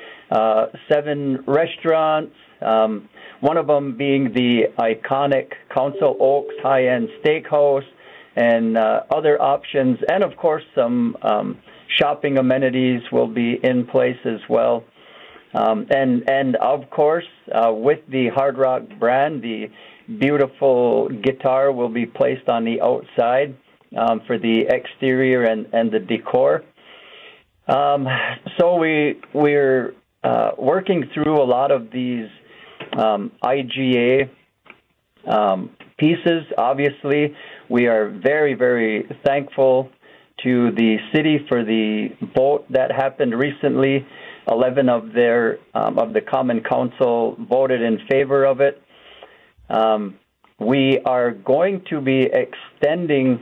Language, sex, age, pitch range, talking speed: English, male, 50-69, 120-145 Hz, 120 wpm